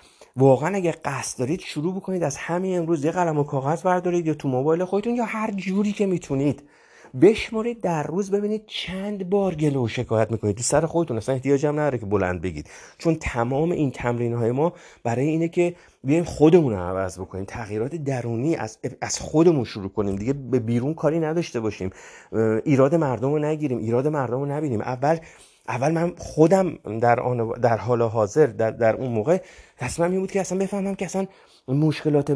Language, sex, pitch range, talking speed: Persian, male, 120-180 Hz, 180 wpm